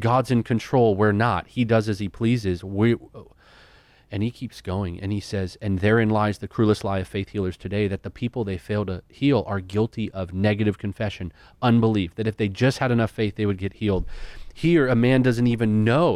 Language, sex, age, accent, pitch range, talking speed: English, male, 30-49, American, 95-115 Hz, 215 wpm